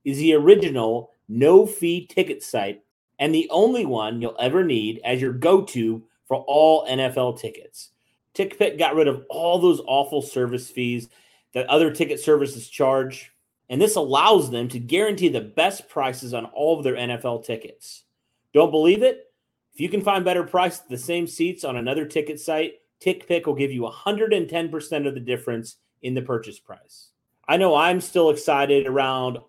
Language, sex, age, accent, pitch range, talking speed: English, male, 30-49, American, 125-165 Hz, 170 wpm